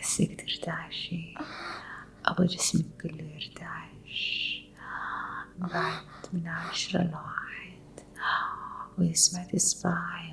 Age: 30-49